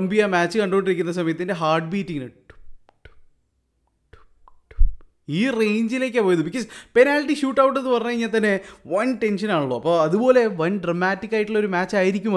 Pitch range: 170-225 Hz